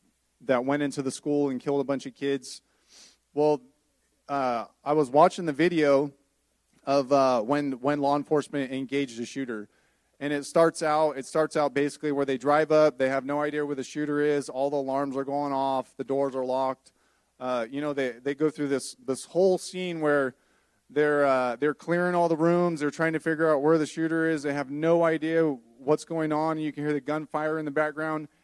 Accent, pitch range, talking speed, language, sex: American, 140-165 Hz, 215 wpm, English, male